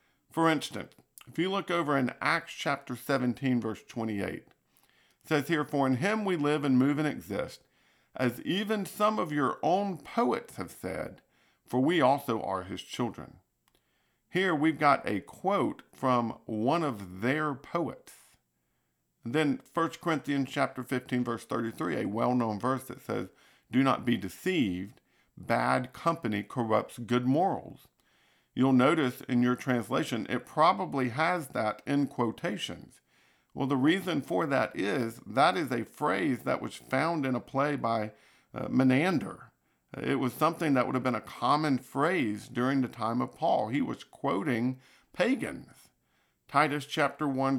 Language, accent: English, American